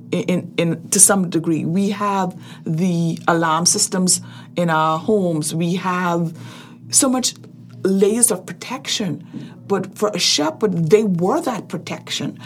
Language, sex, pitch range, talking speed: English, female, 170-215 Hz, 140 wpm